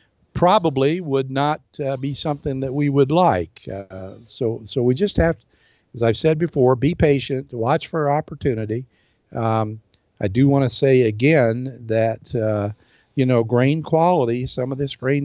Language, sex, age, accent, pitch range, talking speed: English, male, 50-69, American, 110-145 Hz, 170 wpm